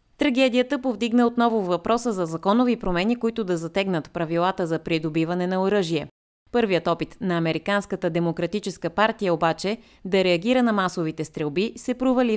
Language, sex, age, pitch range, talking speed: Bulgarian, female, 20-39, 165-220 Hz, 140 wpm